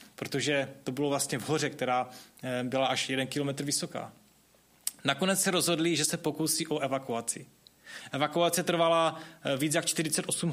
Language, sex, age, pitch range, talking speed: Czech, male, 20-39, 135-170 Hz, 140 wpm